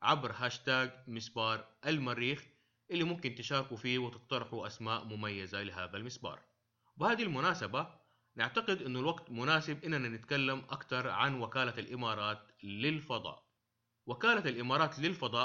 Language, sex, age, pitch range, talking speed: English, male, 30-49, 115-145 Hz, 115 wpm